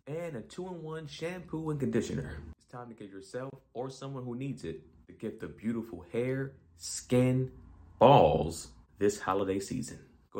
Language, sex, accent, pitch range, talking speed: English, male, American, 85-140 Hz, 155 wpm